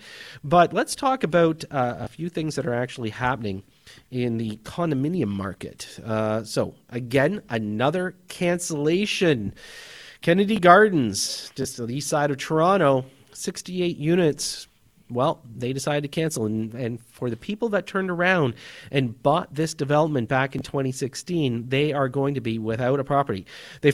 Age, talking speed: 40-59, 155 wpm